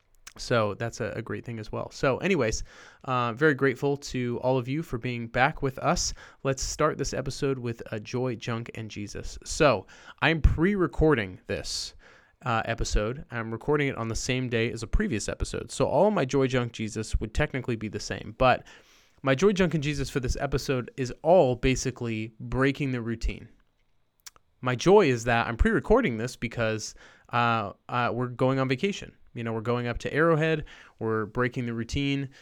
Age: 20-39